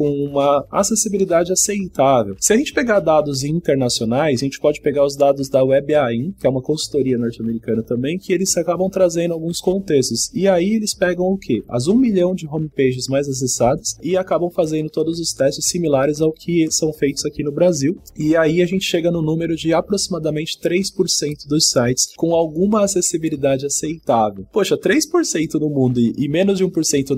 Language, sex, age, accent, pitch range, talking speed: English, male, 20-39, Brazilian, 130-180 Hz, 180 wpm